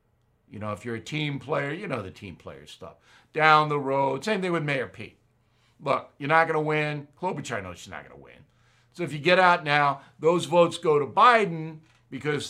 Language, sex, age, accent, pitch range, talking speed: English, male, 60-79, American, 115-160 Hz, 220 wpm